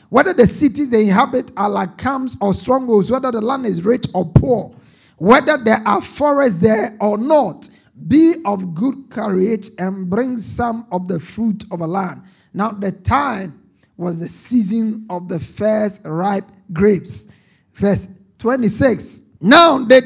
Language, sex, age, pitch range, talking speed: English, male, 50-69, 195-255 Hz, 155 wpm